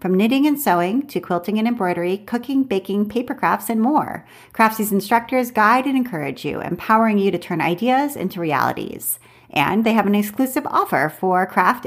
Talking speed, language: 175 wpm, English